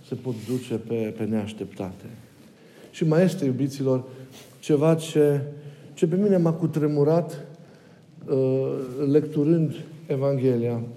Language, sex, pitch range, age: Romanian, male, 110-150 Hz, 50-69